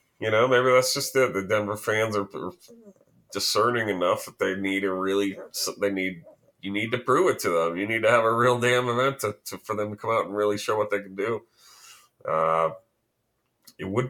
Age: 30-49